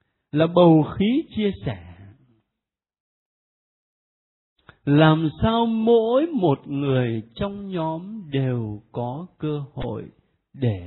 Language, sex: Vietnamese, male